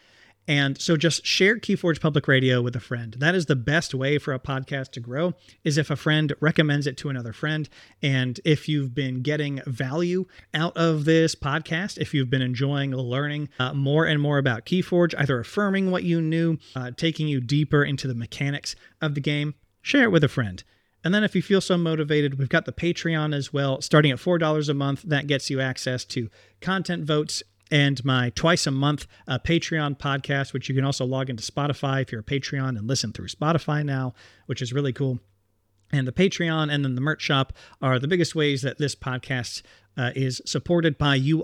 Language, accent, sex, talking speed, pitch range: English, American, male, 210 wpm, 125-155 Hz